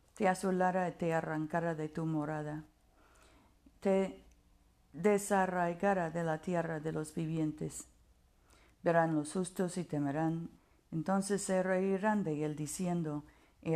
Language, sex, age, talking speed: Spanish, female, 50-69, 120 wpm